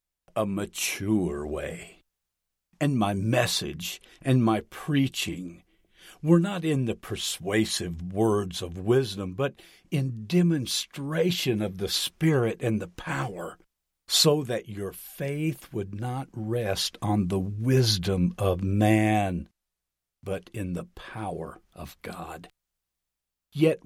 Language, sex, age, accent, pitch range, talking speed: English, male, 60-79, American, 90-125 Hz, 115 wpm